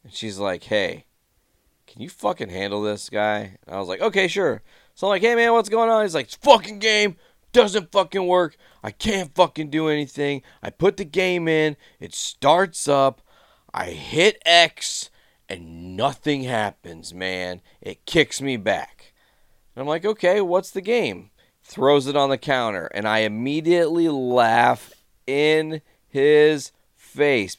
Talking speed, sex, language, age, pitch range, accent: 165 wpm, male, English, 30-49, 120-180 Hz, American